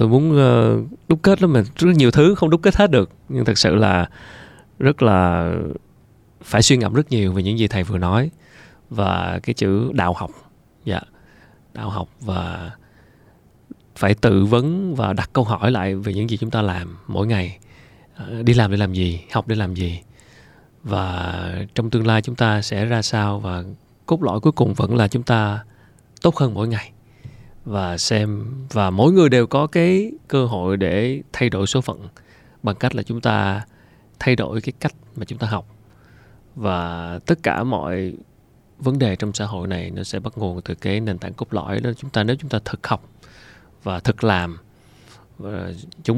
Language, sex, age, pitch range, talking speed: Vietnamese, male, 20-39, 100-125 Hz, 195 wpm